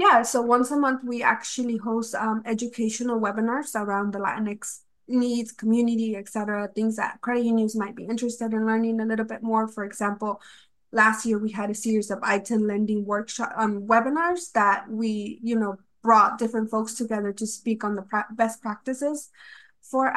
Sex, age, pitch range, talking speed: female, 20-39, 215-245 Hz, 180 wpm